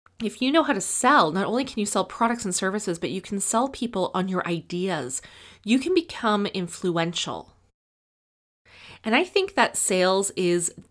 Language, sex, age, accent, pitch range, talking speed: English, female, 20-39, American, 165-215 Hz, 175 wpm